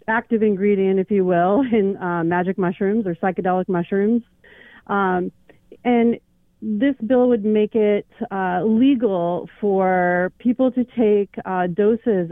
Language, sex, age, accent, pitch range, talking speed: English, female, 30-49, American, 175-215 Hz, 130 wpm